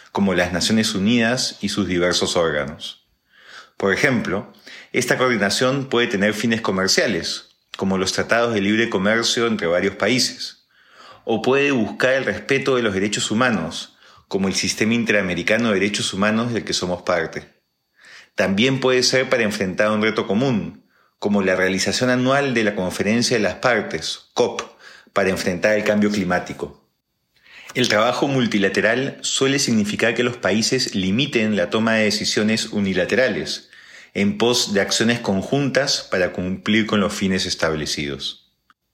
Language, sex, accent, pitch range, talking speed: Spanish, male, Argentinian, 95-120 Hz, 145 wpm